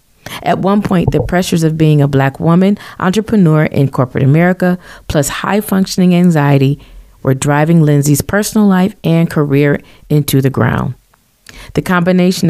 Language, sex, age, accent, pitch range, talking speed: English, female, 40-59, American, 140-180 Hz, 145 wpm